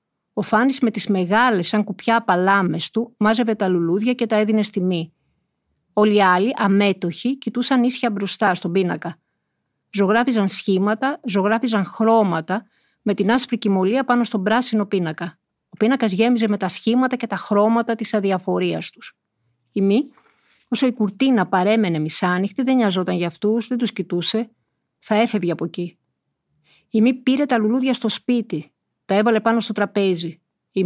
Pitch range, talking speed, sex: 190-230 Hz, 160 wpm, female